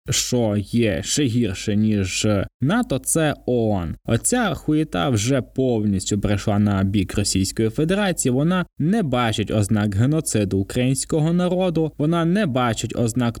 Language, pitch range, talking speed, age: Ukrainian, 110-140 Hz, 130 wpm, 20-39